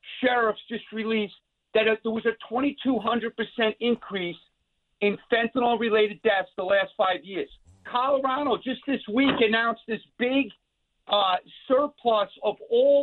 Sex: male